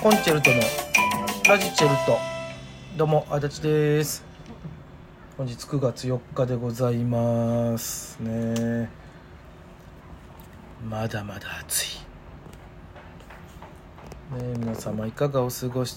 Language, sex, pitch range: Japanese, male, 110-140 Hz